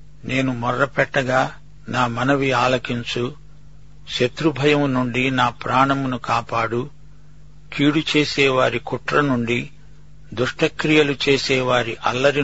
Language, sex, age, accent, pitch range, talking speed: Telugu, male, 50-69, native, 125-150 Hz, 75 wpm